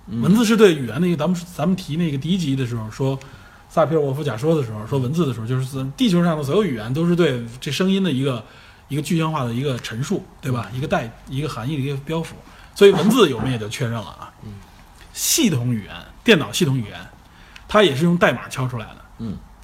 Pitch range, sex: 120-165 Hz, male